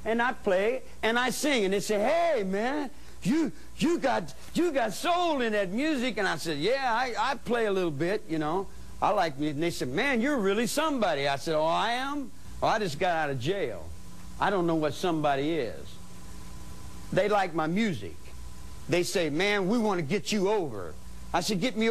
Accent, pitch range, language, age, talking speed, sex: American, 145-220 Hz, English, 60-79, 210 wpm, male